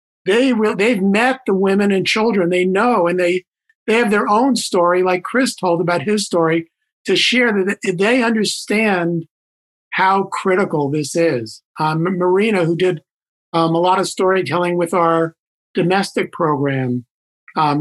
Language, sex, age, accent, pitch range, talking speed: English, male, 50-69, American, 165-200 Hz, 160 wpm